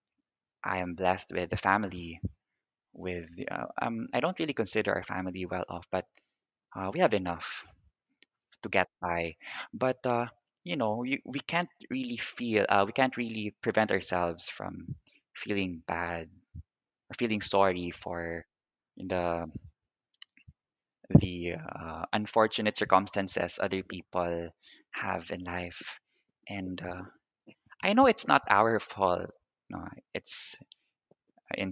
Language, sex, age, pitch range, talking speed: English, male, 20-39, 90-105 Hz, 130 wpm